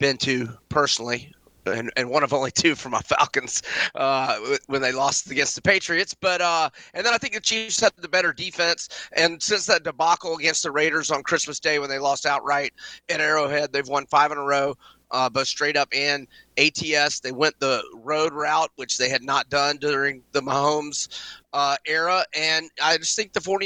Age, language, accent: 30-49, English, American